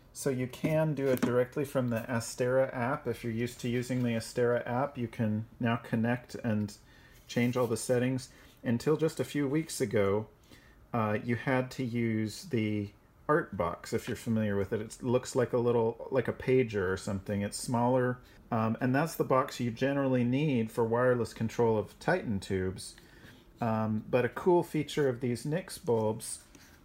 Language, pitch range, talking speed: English, 110-130 Hz, 180 wpm